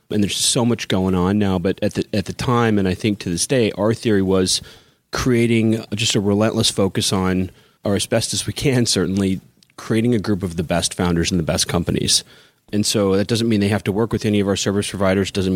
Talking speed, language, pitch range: 240 wpm, English, 100-120 Hz